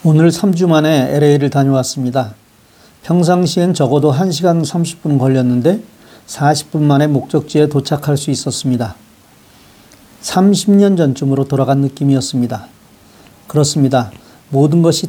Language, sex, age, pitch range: Korean, male, 40-59, 135-165 Hz